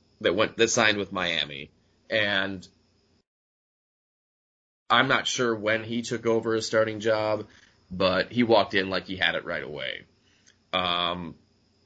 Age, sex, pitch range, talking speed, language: 20-39, male, 95-110 Hz, 140 wpm, English